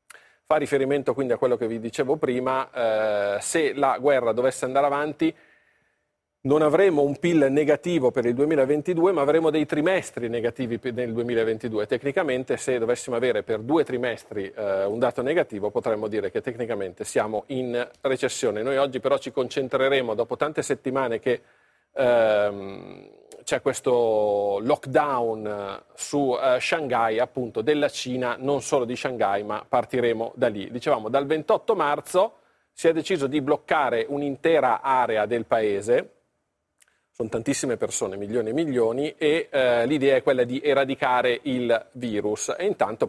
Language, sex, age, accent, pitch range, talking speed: Italian, male, 40-59, native, 115-150 Hz, 150 wpm